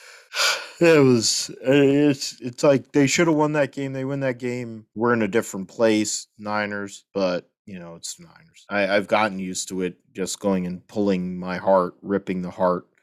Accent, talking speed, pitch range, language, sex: American, 185 wpm, 90-100 Hz, English, male